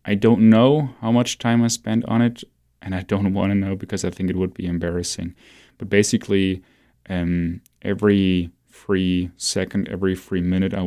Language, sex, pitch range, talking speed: English, male, 90-105 Hz, 180 wpm